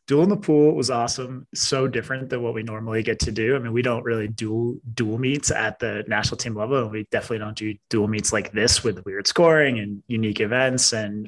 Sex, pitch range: male, 110-135 Hz